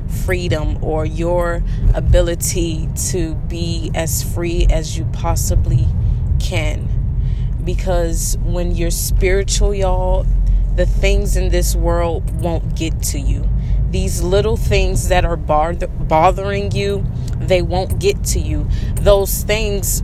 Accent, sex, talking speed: American, female, 120 wpm